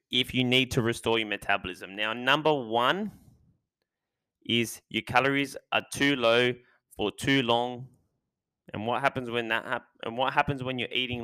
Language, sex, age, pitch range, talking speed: English, male, 10-29, 110-130 Hz, 160 wpm